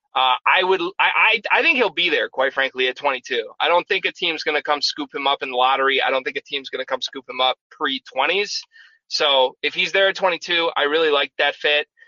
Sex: male